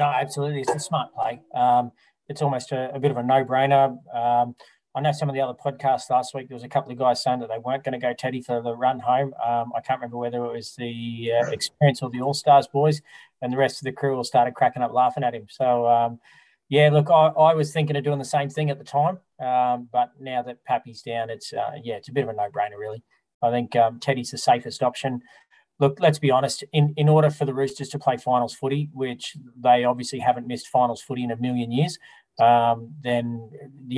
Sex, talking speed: male, 240 wpm